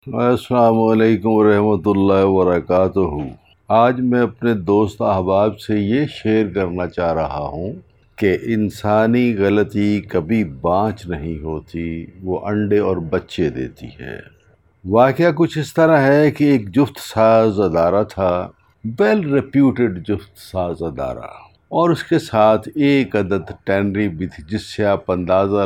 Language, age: Urdu, 50-69